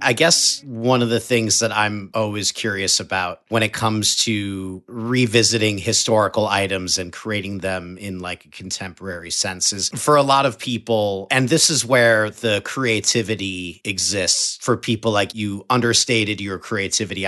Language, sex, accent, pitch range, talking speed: English, male, American, 95-115 Hz, 155 wpm